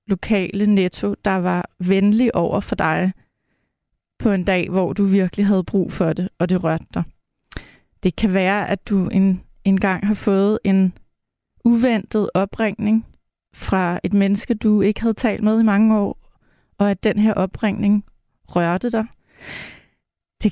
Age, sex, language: 20-39, female, Danish